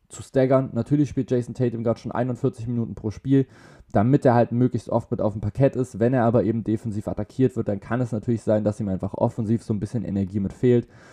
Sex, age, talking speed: male, 20-39, 235 wpm